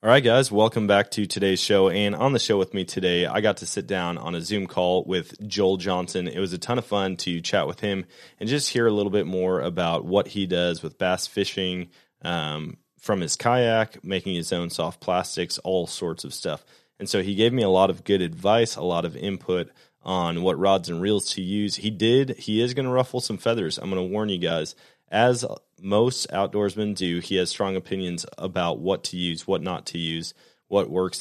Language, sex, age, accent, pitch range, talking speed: English, male, 20-39, American, 90-105 Hz, 225 wpm